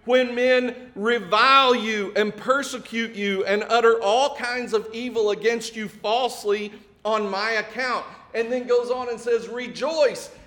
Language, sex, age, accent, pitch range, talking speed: English, male, 50-69, American, 140-225 Hz, 150 wpm